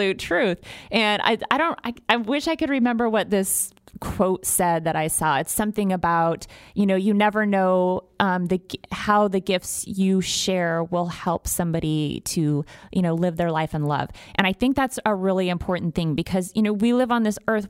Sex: female